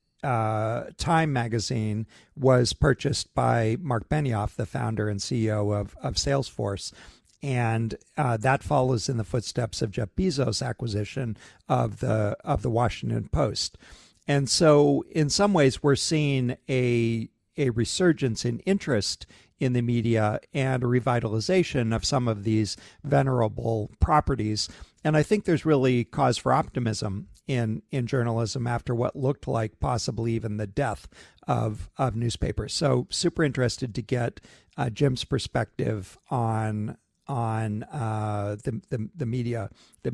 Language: English